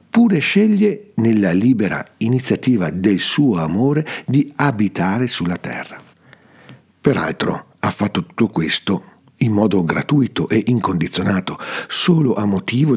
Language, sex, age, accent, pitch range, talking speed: Italian, male, 50-69, native, 95-140 Hz, 115 wpm